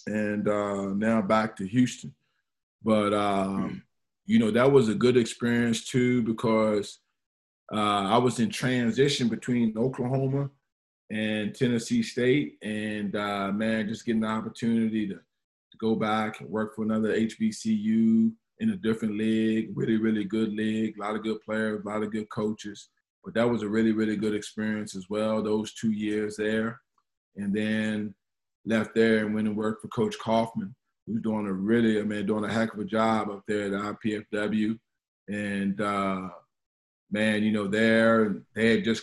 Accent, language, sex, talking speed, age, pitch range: American, English, male, 170 wpm, 20-39, 105-115 Hz